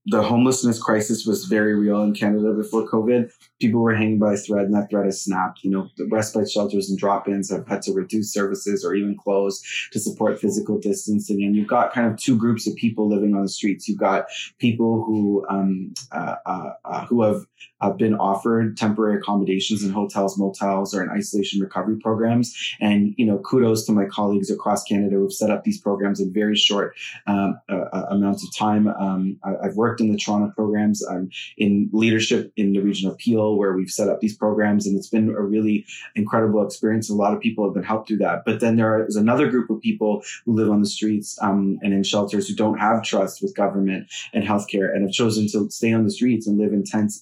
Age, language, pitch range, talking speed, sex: 20-39, English, 100-110 Hz, 220 wpm, male